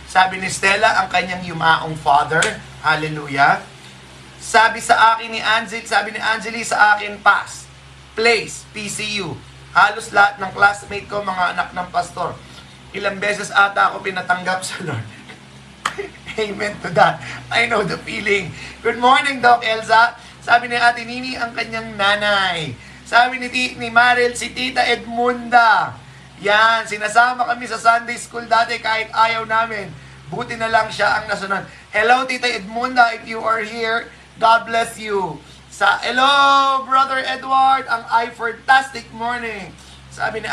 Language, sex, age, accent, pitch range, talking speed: Filipino, male, 30-49, native, 180-235 Hz, 145 wpm